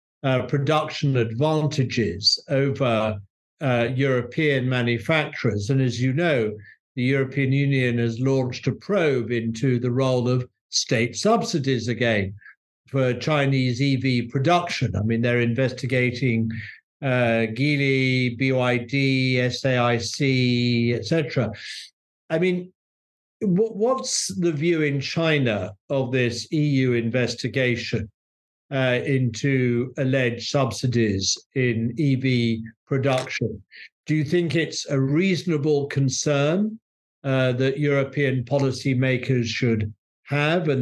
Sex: male